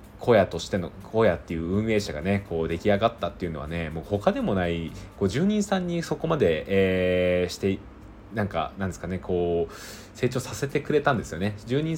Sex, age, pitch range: male, 20-39, 90-115 Hz